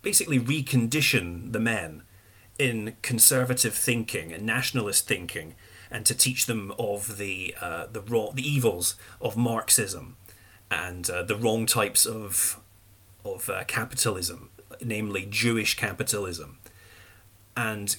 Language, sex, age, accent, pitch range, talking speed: English, male, 30-49, British, 100-130 Hz, 120 wpm